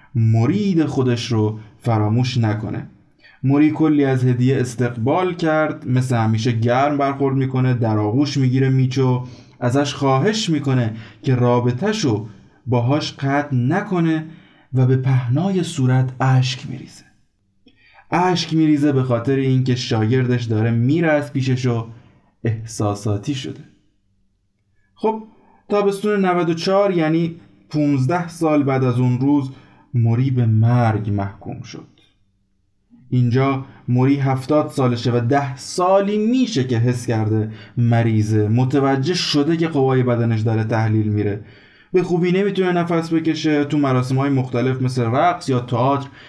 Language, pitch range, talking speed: Persian, 115-150 Hz, 120 wpm